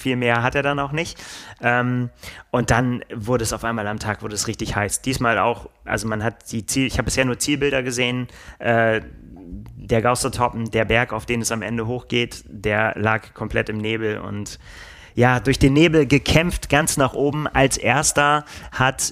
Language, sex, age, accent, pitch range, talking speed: German, male, 30-49, German, 110-130 Hz, 190 wpm